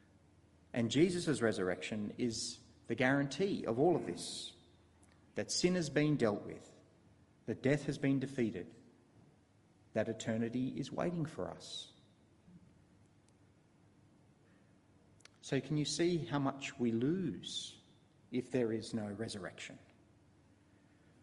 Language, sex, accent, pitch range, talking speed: English, male, Australian, 105-140 Hz, 115 wpm